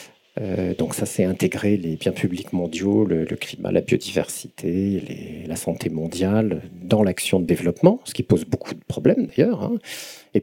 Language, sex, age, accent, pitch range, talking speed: French, male, 50-69, French, 95-125 Hz, 180 wpm